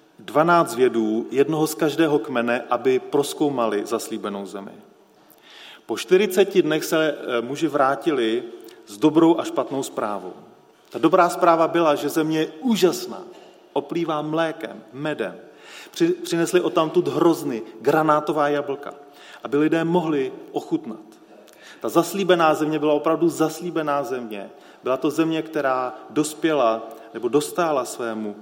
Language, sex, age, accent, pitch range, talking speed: Czech, male, 30-49, native, 145-205 Hz, 120 wpm